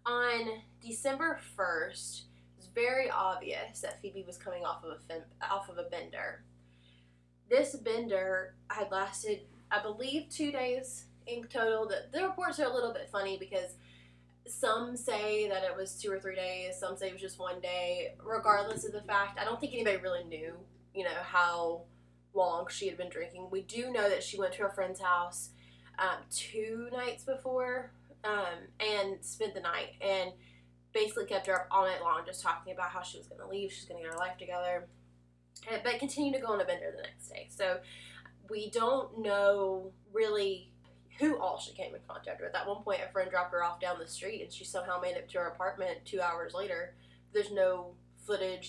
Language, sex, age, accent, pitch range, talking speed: English, female, 20-39, American, 175-225 Hz, 195 wpm